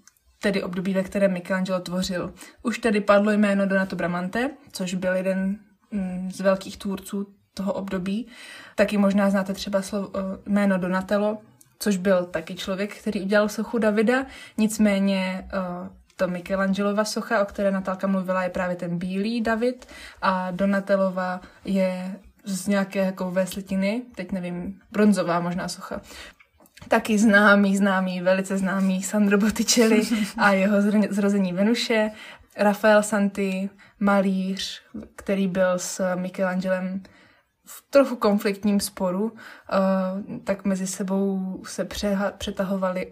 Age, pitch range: 20-39, 185-210 Hz